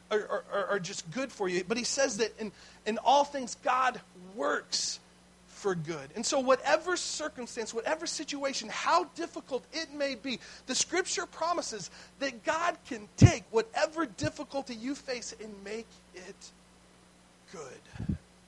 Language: English